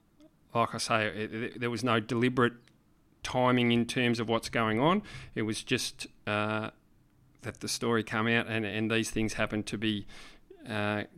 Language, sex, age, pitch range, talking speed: English, male, 40-59, 110-130 Hz, 165 wpm